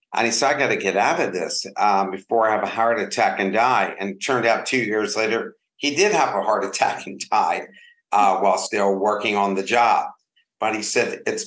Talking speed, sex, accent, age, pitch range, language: 235 wpm, male, American, 50-69, 105-130 Hz, English